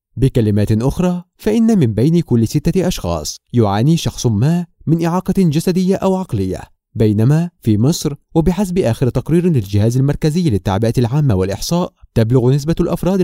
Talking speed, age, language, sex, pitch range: 135 wpm, 30-49, Arabic, male, 115-175 Hz